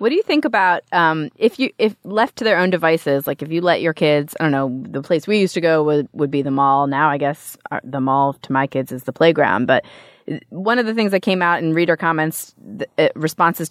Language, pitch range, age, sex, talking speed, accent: English, 150-195 Hz, 30-49, female, 260 wpm, American